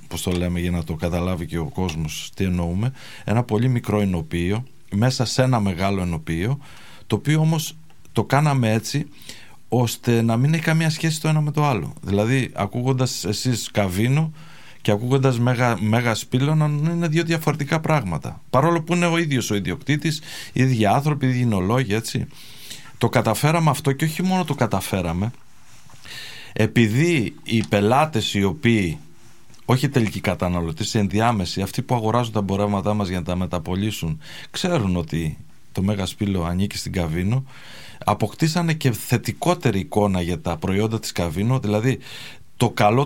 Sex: male